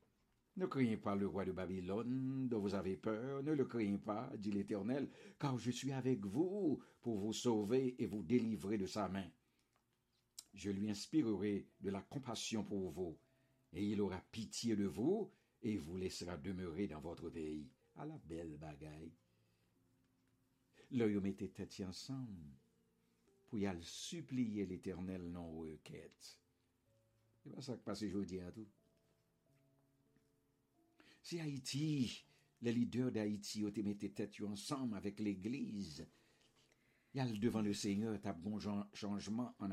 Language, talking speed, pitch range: English, 150 wpm, 100-125 Hz